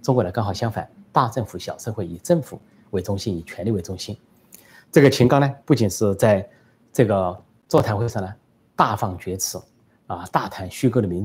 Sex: male